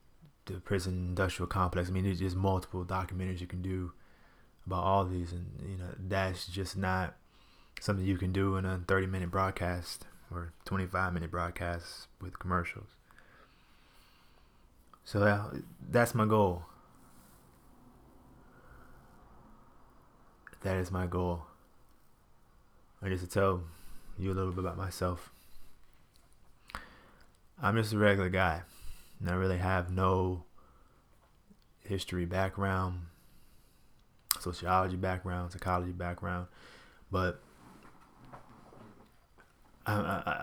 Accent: American